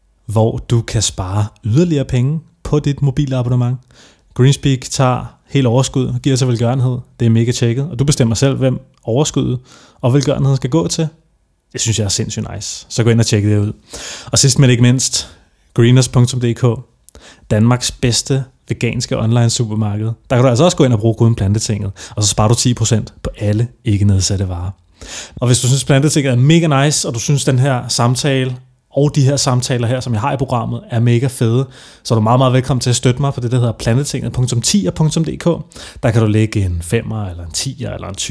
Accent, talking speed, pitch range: native, 200 wpm, 115-140 Hz